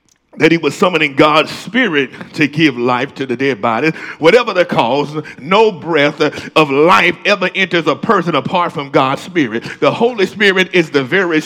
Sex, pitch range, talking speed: male, 200-290 Hz, 180 wpm